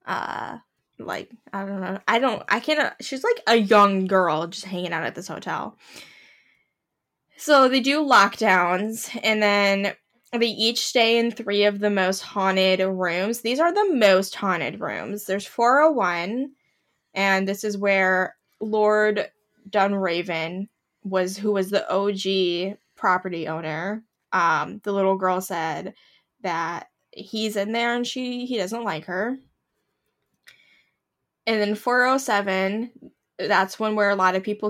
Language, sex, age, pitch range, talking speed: English, female, 10-29, 190-230 Hz, 140 wpm